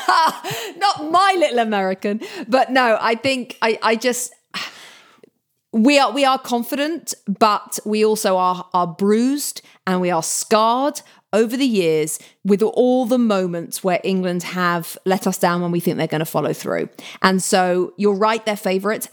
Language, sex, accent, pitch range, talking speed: English, female, British, 190-255 Hz, 165 wpm